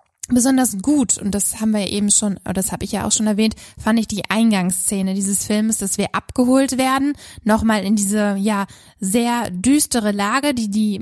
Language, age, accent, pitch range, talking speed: German, 20-39, German, 200-230 Hz, 190 wpm